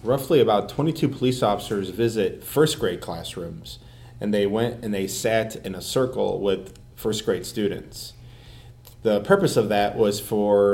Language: English